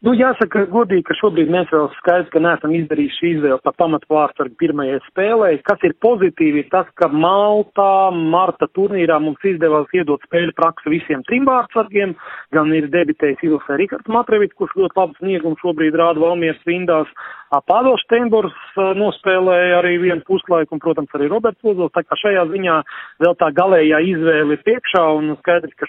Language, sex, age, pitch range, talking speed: English, male, 40-59, 155-185 Hz, 165 wpm